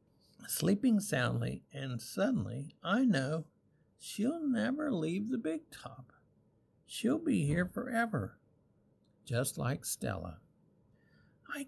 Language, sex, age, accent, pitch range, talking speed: English, male, 60-79, American, 120-185 Hz, 105 wpm